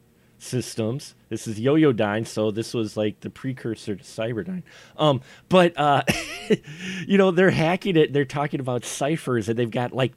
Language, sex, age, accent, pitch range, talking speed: English, male, 30-49, American, 115-160 Hz, 175 wpm